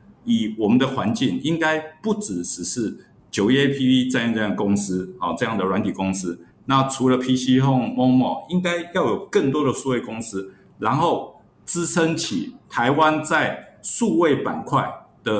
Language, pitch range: Chinese, 105-155 Hz